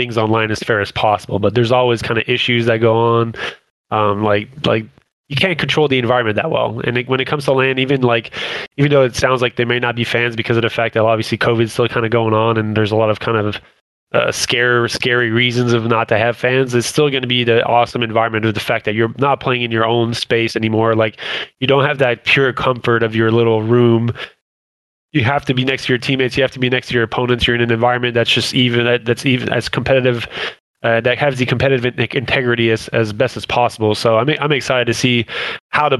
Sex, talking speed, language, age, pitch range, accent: male, 245 wpm, English, 20-39, 115-130 Hz, American